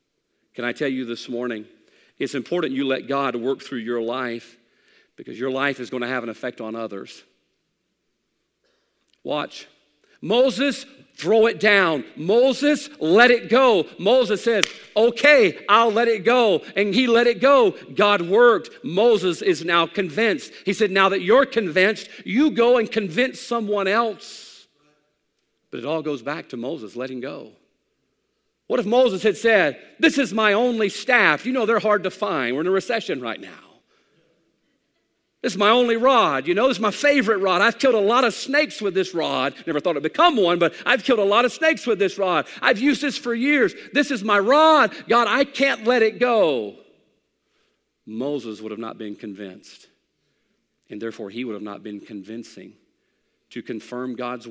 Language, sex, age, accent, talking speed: English, male, 50-69, American, 180 wpm